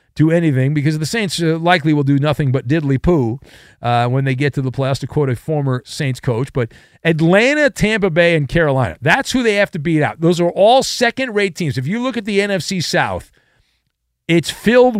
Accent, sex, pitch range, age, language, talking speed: American, male, 135-205 Hz, 40-59, English, 200 wpm